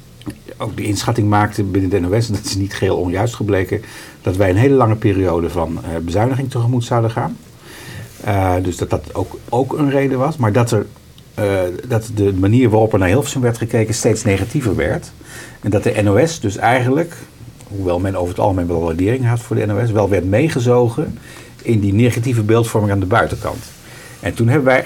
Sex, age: male, 50-69